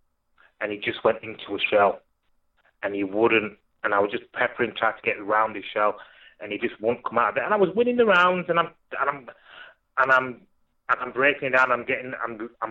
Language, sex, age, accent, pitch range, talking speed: English, male, 30-49, British, 110-135 Hz, 230 wpm